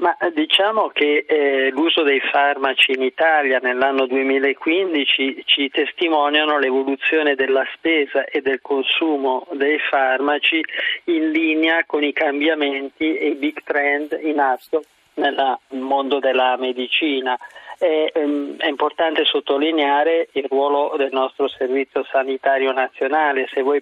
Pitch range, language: 135-160 Hz, Italian